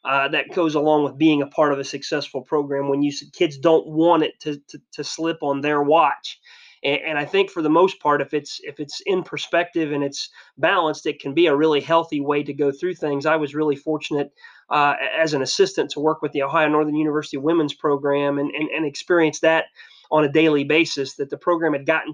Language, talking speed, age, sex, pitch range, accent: English, 230 wpm, 30-49, male, 145-170 Hz, American